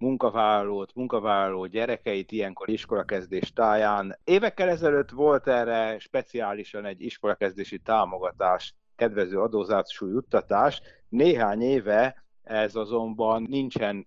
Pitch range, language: 100-125 Hz, Hungarian